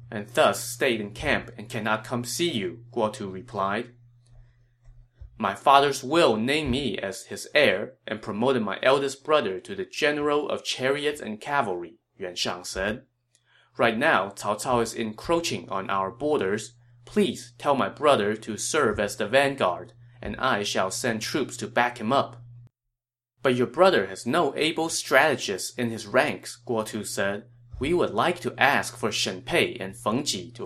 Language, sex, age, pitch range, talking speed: English, male, 20-39, 110-130 Hz, 170 wpm